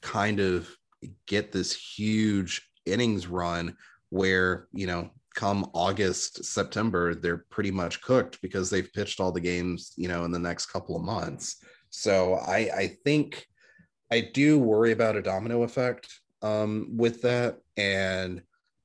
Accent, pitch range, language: American, 90-110 Hz, English